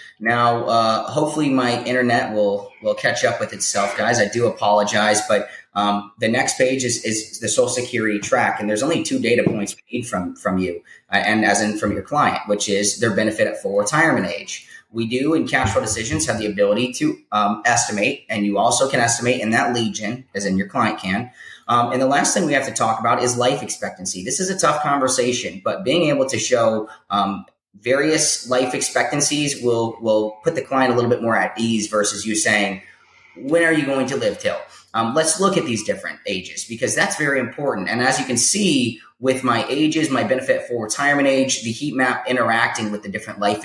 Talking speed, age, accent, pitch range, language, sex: 215 wpm, 30-49, American, 105-140 Hz, English, male